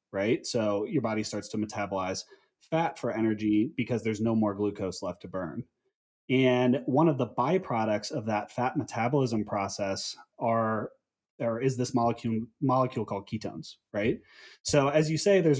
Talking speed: 160 wpm